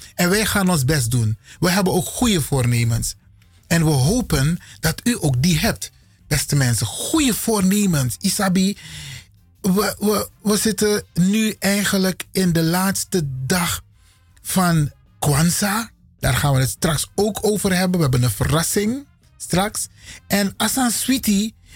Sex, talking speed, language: male, 145 wpm, Dutch